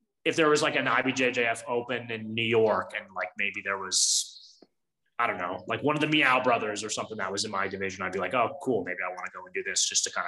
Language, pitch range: English, 100-130 Hz